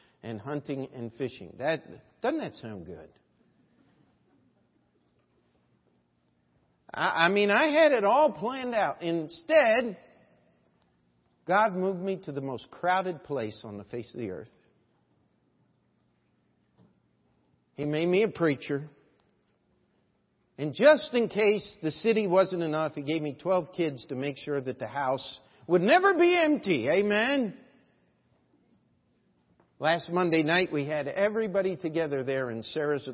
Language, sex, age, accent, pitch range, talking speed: English, male, 50-69, American, 120-165 Hz, 130 wpm